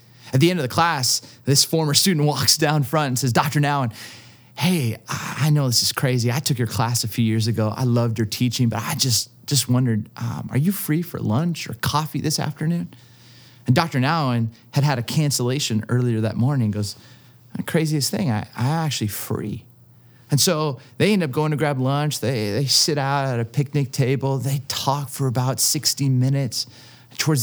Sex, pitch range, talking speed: male, 120-145 Hz, 200 wpm